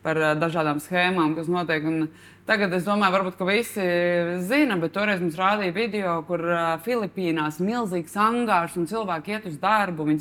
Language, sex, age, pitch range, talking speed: English, female, 20-39, 160-205 Hz, 160 wpm